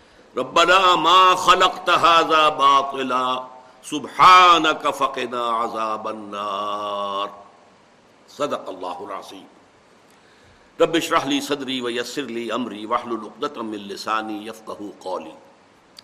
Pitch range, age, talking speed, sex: 125-180 Hz, 60-79, 75 wpm, male